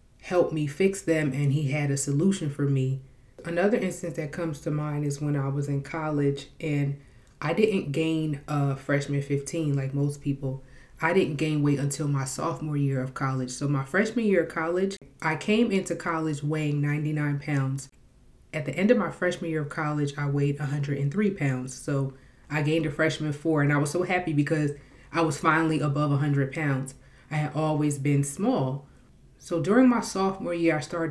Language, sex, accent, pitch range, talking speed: English, female, American, 140-165 Hz, 190 wpm